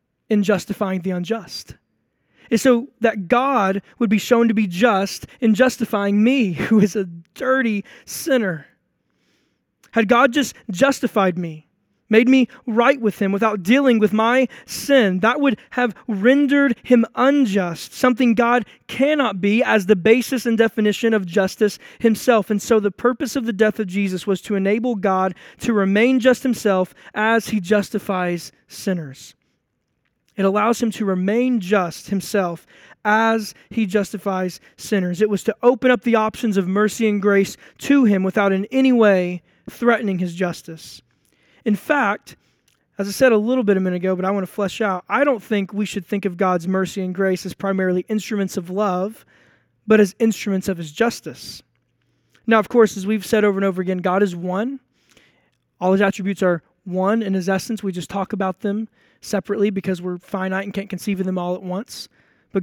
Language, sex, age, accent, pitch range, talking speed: English, male, 20-39, American, 190-230 Hz, 175 wpm